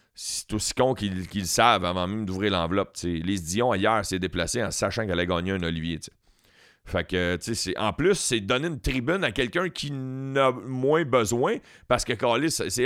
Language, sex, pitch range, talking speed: French, male, 95-120 Hz, 185 wpm